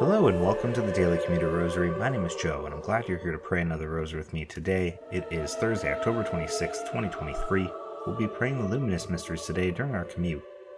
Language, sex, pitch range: English, male, 85-105 Hz